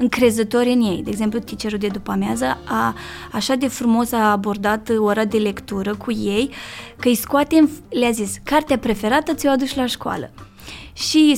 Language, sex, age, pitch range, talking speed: Romanian, female, 20-39, 215-270 Hz, 175 wpm